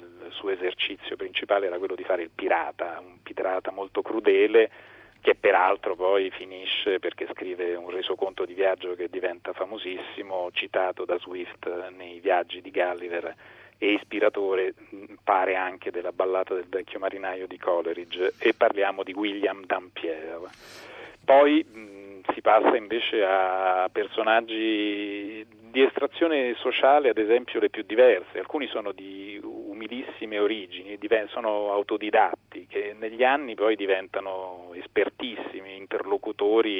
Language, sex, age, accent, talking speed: Italian, male, 40-59, native, 125 wpm